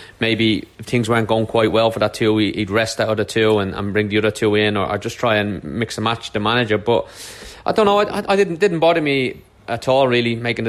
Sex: male